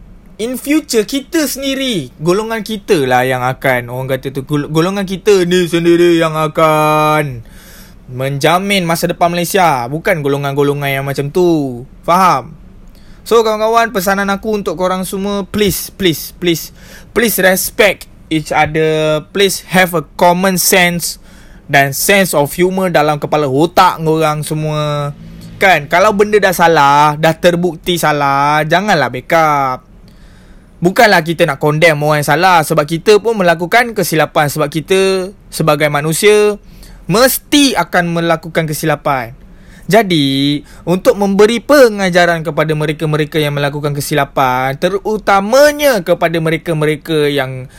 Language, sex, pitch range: Malay, male, 150-195 Hz